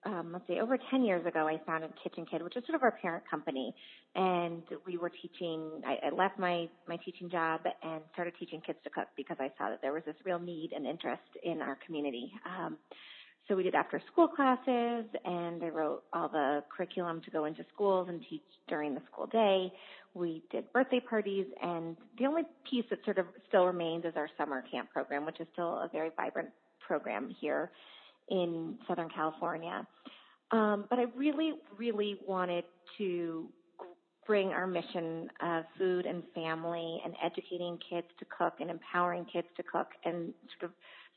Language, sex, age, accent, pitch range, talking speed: English, female, 30-49, American, 165-200 Hz, 185 wpm